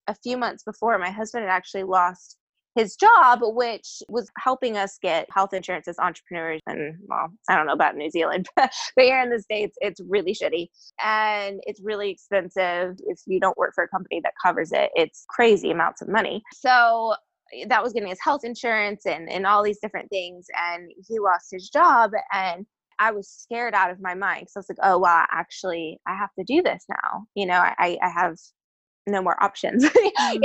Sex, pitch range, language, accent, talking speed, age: female, 185-240 Hz, English, American, 200 wpm, 20-39